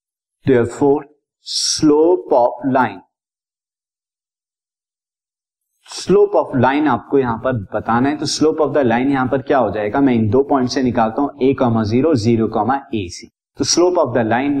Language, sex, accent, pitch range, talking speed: Hindi, male, native, 115-150 Hz, 170 wpm